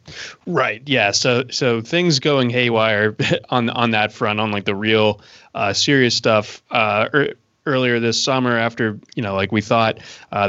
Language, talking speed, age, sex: English, 170 wpm, 20-39, male